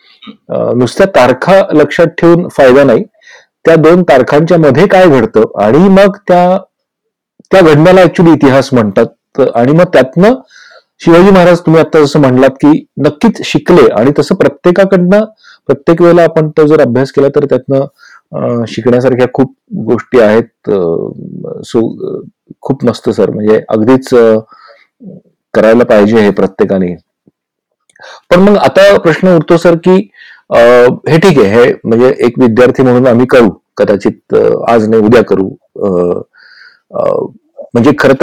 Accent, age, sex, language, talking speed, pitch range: native, 40-59, male, Marathi, 90 wpm, 120-180 Hz